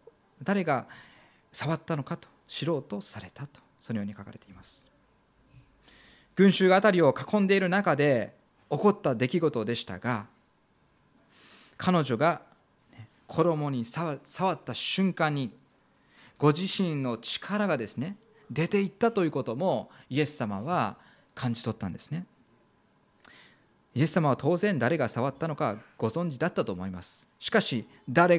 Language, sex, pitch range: Japanese, male, 125-180 Hz